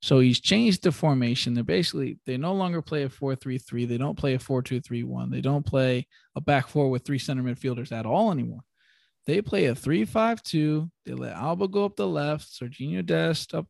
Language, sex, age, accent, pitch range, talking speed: English, male, 20-39, American, 125-160 Hz, 195 wpm